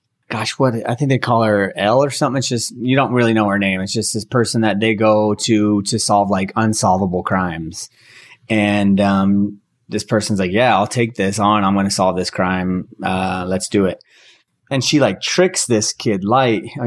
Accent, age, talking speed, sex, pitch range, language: American, 30-49, 210 wpm, male, 100-120 Hz, English